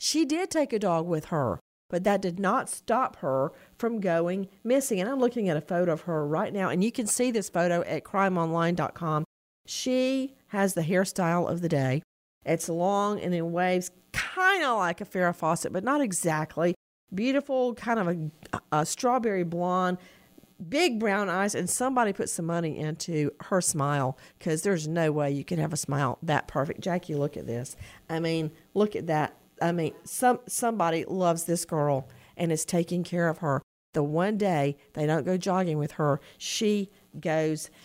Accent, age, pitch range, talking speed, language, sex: American, 50-69, 160-235 Hz, 185 wpm, English, female